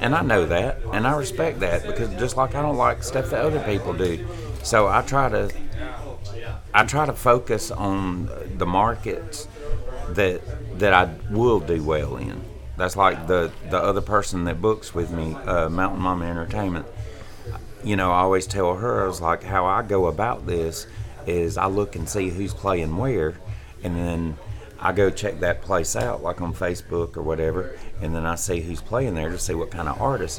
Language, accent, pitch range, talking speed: English, American, 85-105 Hz, 195 wpm